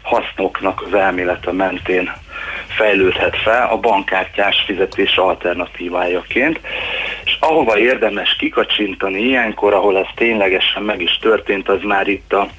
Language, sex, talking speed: Hungarian, male, 120 wpm